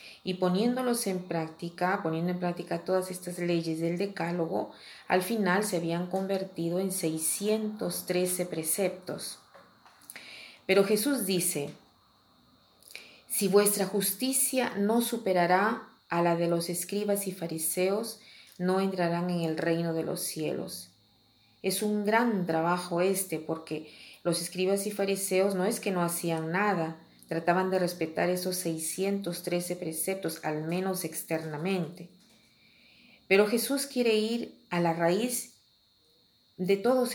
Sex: female